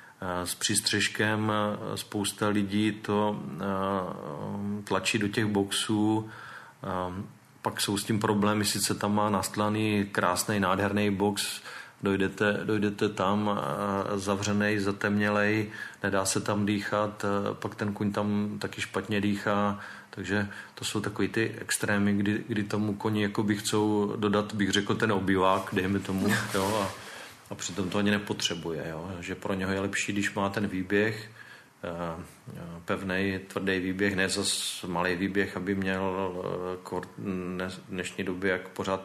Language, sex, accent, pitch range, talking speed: Czech, male, native, 95-105 Hz, 130 wpm